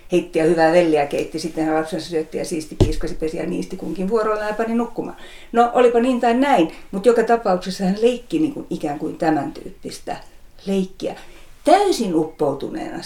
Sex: female